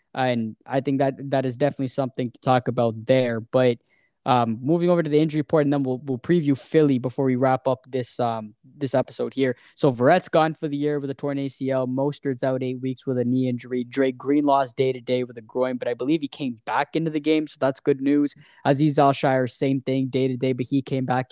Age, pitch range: 10-29, 125-140 Hz